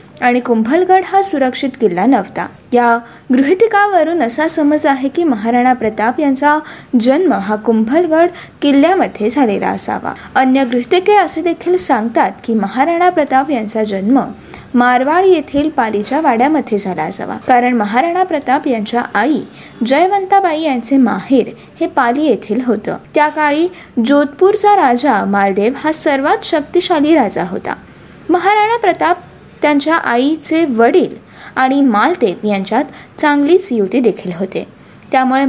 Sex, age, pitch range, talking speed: female, 20-39, 245-340 Hz, 120 wpm